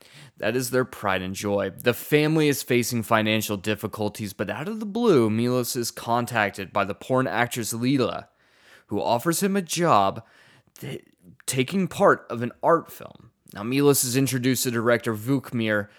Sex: male